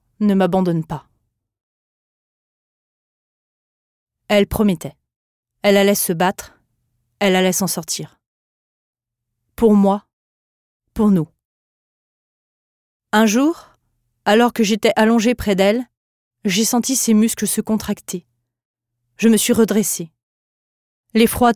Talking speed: 105 wpm